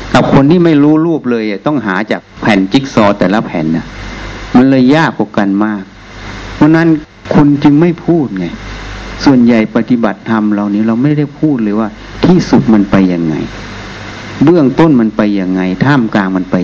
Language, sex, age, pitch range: Thai, male, 60-79, 105-130 Hz